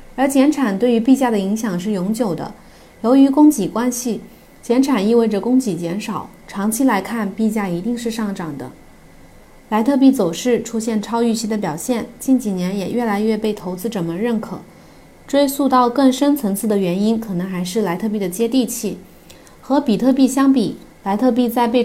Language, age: Chinese, 30-49